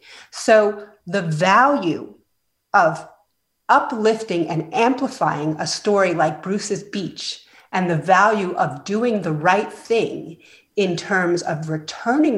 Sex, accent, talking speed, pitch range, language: female, American, 115 wpm, 180-245 Hz, English